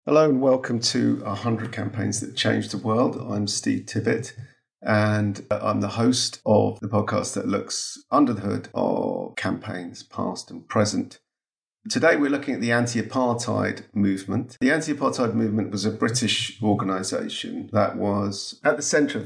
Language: English